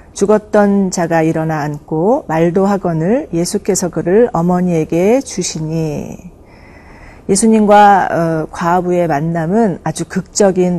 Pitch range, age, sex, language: 160-205 Hz, 40-59, female, Korean